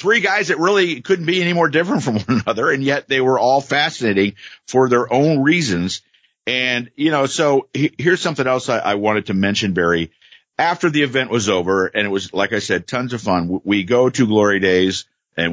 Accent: American